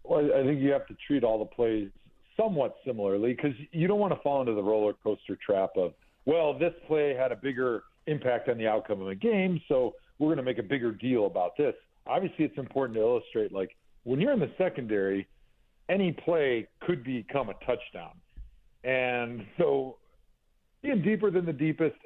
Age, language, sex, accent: 50-69, English, male, American